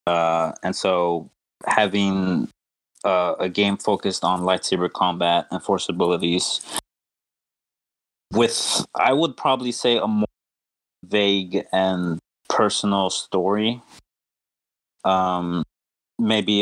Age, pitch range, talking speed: 30-49, 85-100 Hz, 100 wpm